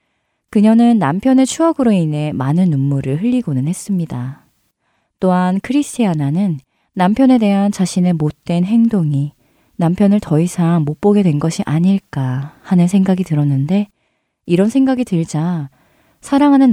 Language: Korean